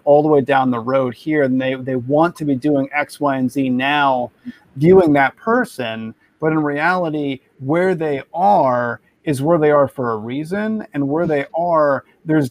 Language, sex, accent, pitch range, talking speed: English, male, American, 130-155 Hz, 190 wpm